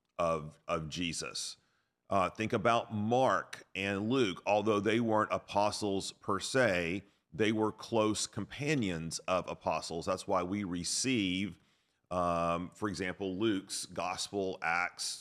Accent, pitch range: American, 85-115 Hz